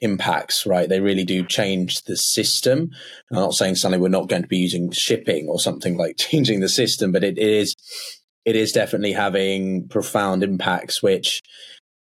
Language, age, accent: English, 20-39, British